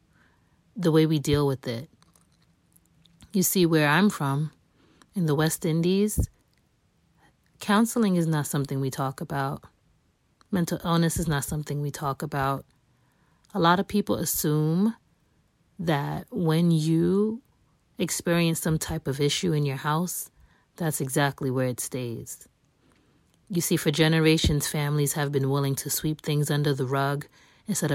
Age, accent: 30-49, American